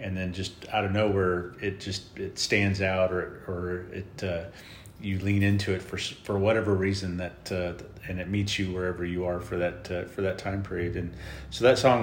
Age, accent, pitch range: 30-49, American, 90-100 Hz